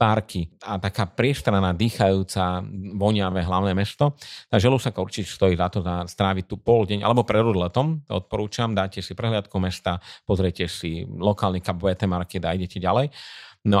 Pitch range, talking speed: 95-115 Hz, 150 wpm